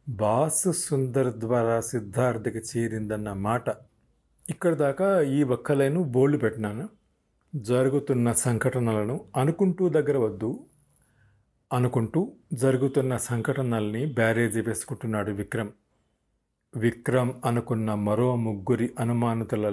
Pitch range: 115-155 Hz